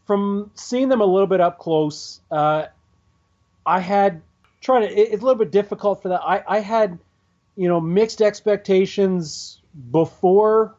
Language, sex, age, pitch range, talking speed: English, male, 40-59, 160-200 Hz, 155 wpm